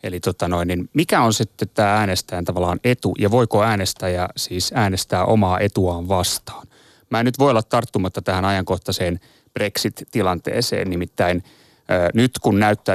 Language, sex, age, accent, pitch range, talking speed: Finnish, male, 30-49, native, 95-120 Hz, 155 wpm